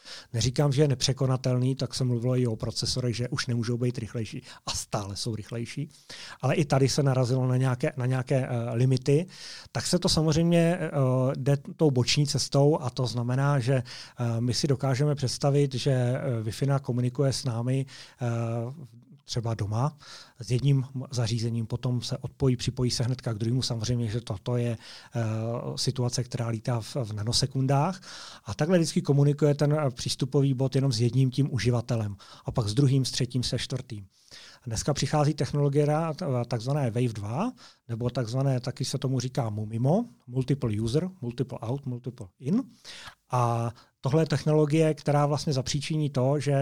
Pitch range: 120-145 Hz